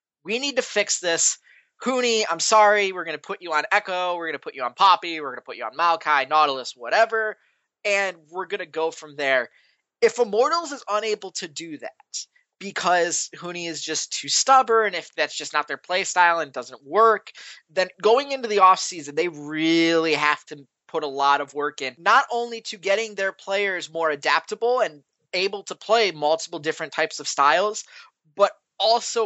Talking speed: 195 wpm